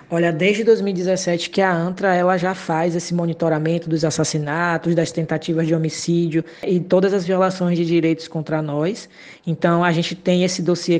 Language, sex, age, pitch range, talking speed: Portuguese, female, 20-39, 165-195 Hz, 170 wpm